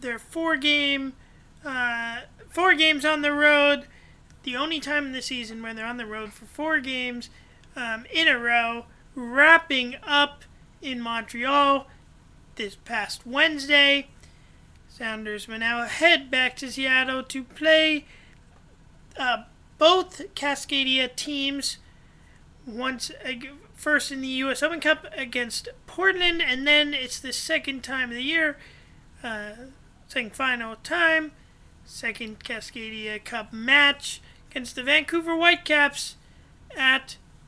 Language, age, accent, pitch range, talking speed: English, 30-49, American, 235-295 Hz, 125 wpm